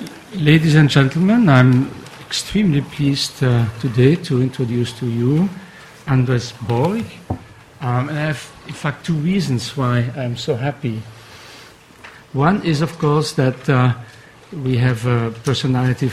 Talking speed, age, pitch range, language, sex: 130 wpm, 60-79, 120-150 Hz, English, male